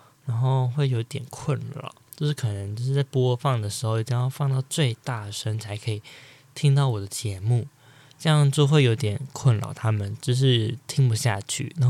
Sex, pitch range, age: male, 125-145 Hz, 20-39